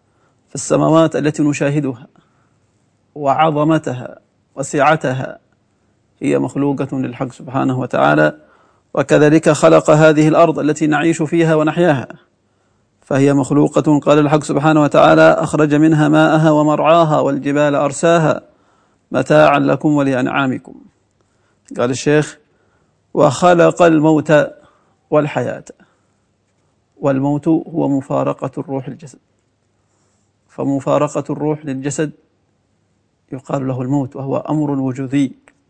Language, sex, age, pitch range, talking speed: Arabic, male, 40-59, 135-155 Hz, 85 wpm